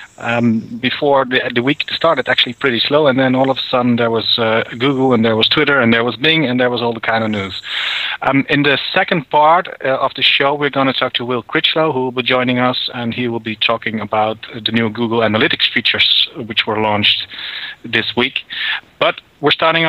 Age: 40-59